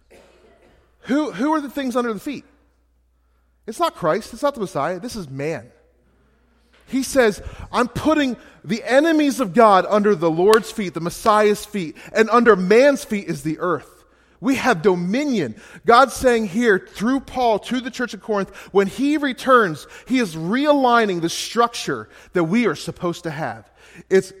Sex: male